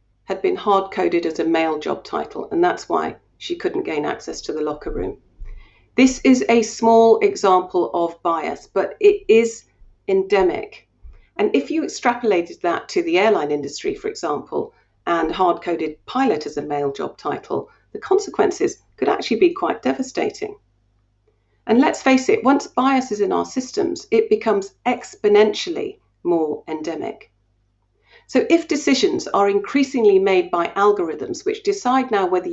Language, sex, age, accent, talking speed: English, female, 40-59, British, 155 wpm